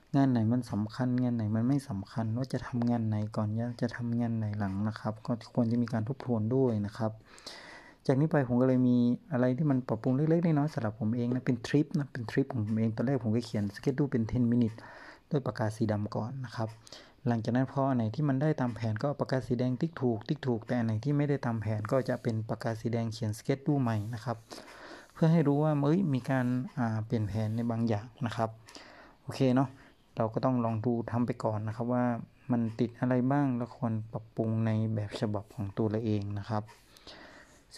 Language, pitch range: Thai, 110-130 Hz